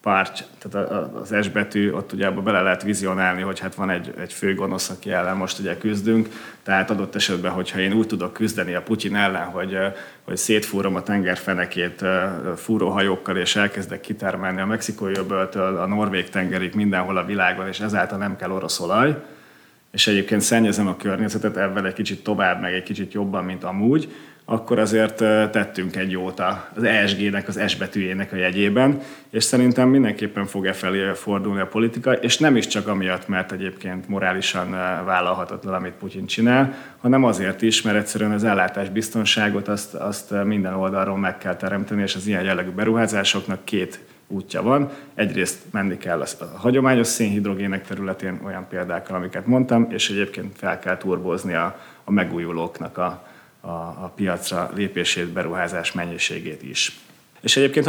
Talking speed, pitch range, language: 160 wpm, 95-110 Hz, Hungarian